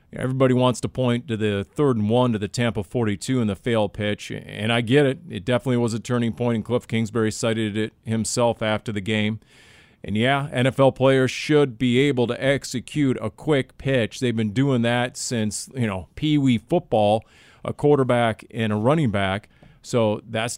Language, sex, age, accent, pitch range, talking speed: English, male, 40-59, American, 110-135 Hz, 190 wpm